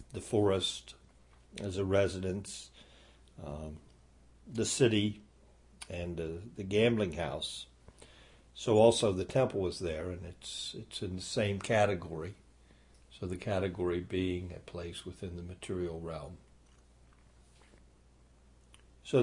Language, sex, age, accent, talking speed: English, male, 60-79, American, 115 wpm